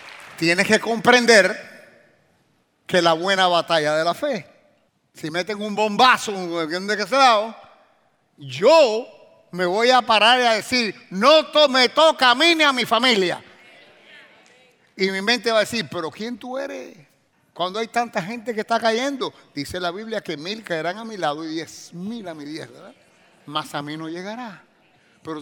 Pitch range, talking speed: 180-285 Hz, 175 wpm